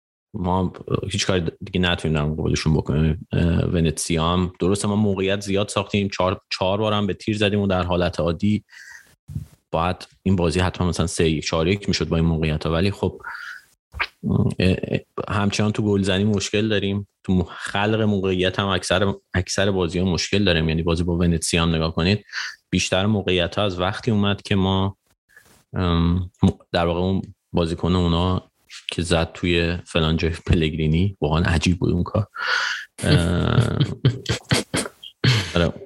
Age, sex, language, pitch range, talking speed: 30-49, male, Persian, 85-100 Hz, 140 wpm